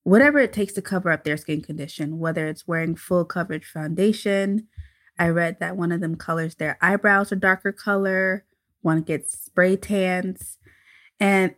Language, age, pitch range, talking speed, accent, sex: English, 20-39, 145-190 Hz, 165 wpm, American, female